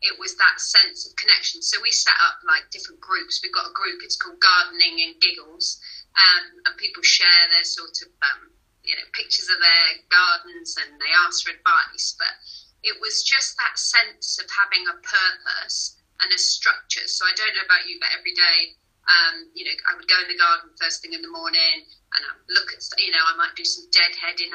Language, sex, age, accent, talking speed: English, female, 30-49, British, 215 wpm